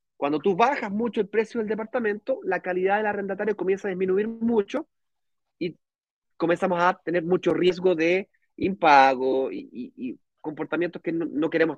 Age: 30-49